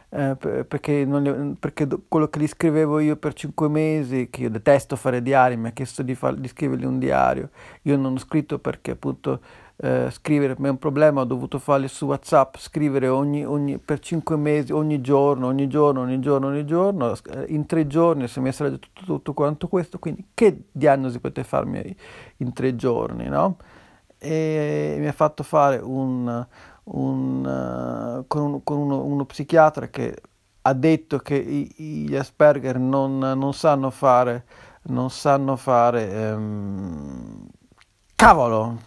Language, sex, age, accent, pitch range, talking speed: Finnish, male, 40-59, Italian, 125-150 Hz, 170 wpm